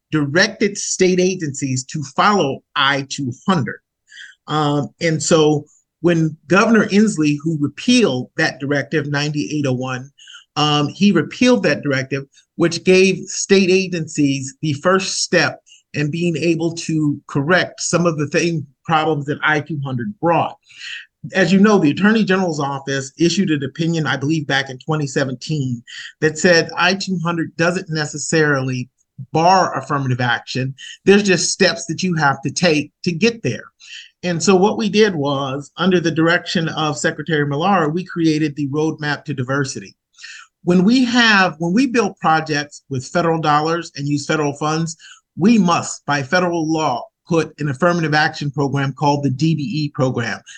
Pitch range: 145-180 Hz